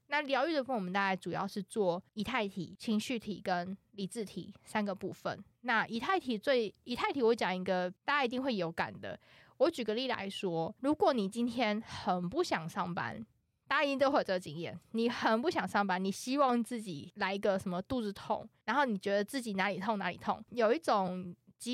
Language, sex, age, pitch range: Chinese, female, 20-39, 190-245 Hz